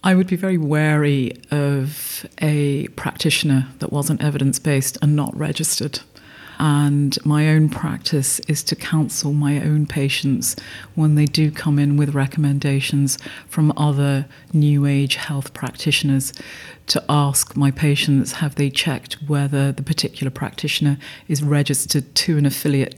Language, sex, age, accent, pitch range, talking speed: English, female, 40-59, British, 140-150 Hz, 140 wpm